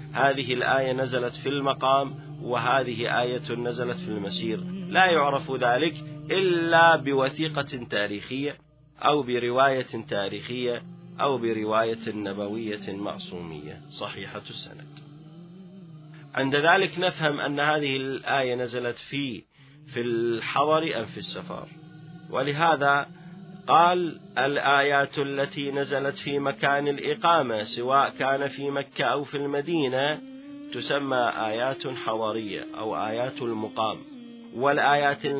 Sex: male